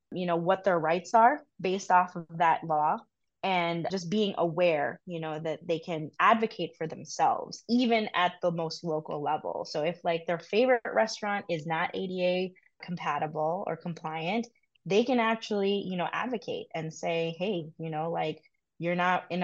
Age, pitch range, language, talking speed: 20-39, 160-185 Hz, English, 175 wpm